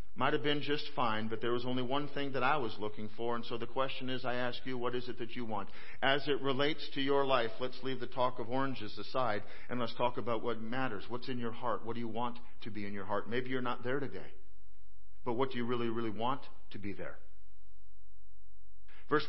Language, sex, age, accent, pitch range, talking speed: English, male, 50-69, American, 115-135 Hz, 245 wpm